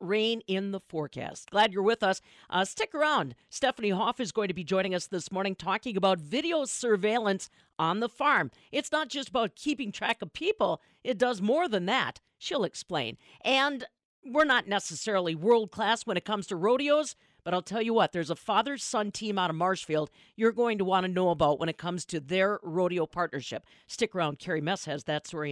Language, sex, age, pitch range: English, female, 50-69, 185-245 Hz